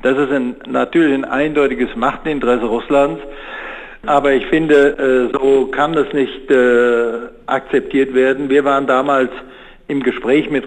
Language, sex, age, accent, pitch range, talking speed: German, male, 60-79, German, 130-145 Hz, 125 wpm